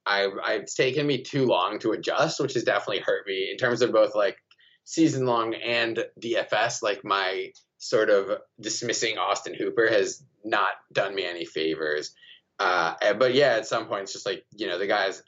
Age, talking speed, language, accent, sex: 20-39, 190 wpm, English, American, male